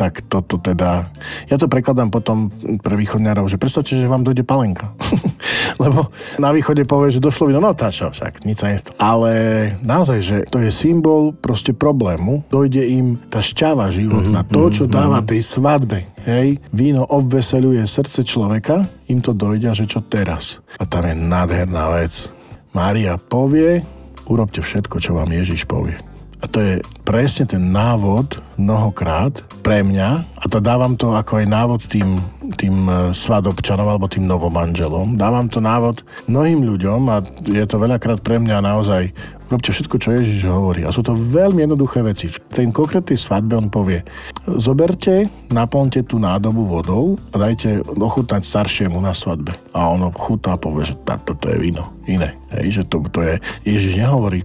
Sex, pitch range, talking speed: male, 95-125 Hz, 170 wpm